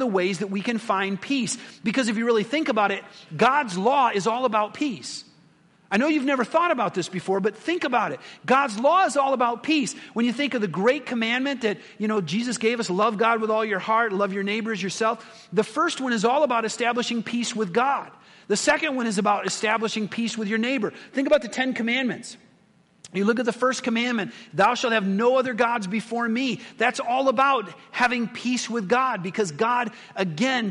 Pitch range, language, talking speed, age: 200-245 Hz, English, 215 wpm, 40-59